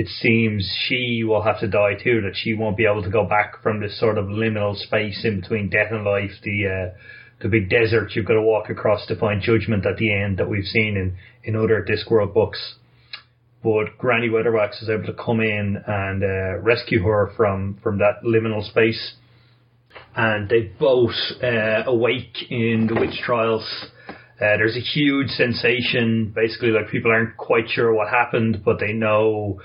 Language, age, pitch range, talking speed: English, 30-49, 105-120 Hz, 190 wpm